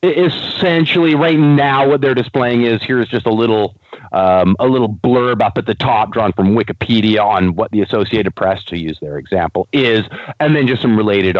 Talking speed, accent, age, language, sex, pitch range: 195 wpm, American, 30-49, English, male, 110-150 Hz